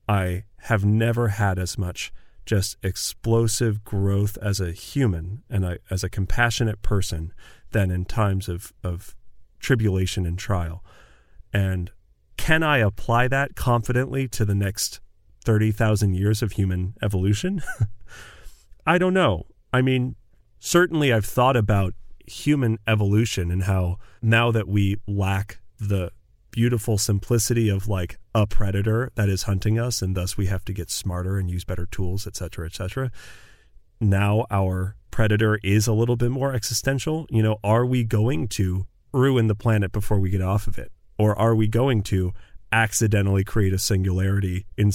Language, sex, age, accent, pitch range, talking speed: English, male, 40-59, American, 95-115 Hz, 155 wpm